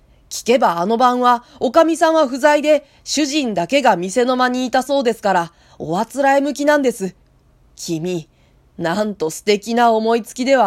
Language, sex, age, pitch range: Japanese, female, 20-39, 180-280 Hz